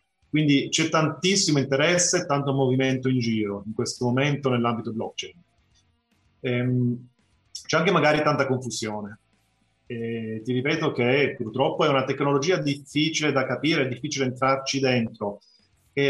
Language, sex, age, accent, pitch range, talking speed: Italian, male, 30-49, native, 115-150 Hz, 130 wpm